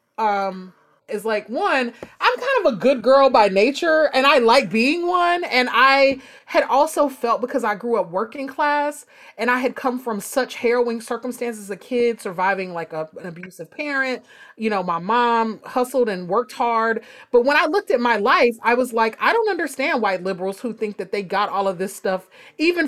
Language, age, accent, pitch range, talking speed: English, 30-49, American, 200-270 Hz, 205 wpm